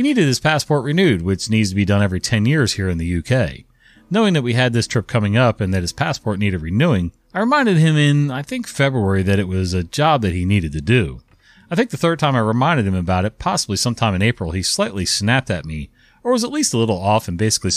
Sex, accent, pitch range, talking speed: male, American, 95-145 Hz, 255 wpm